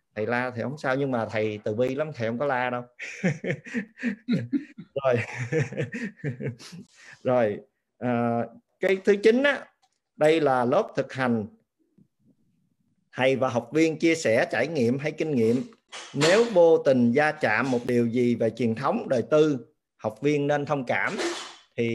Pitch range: 120-155 Hz